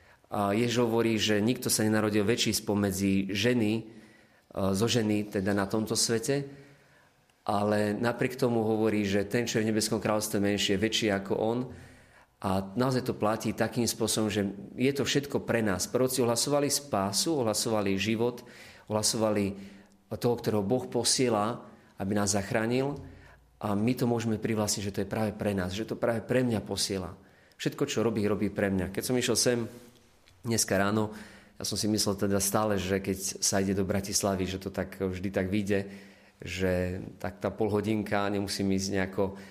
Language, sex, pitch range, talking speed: Slovak, male, 100-115 Hz, 165 wpm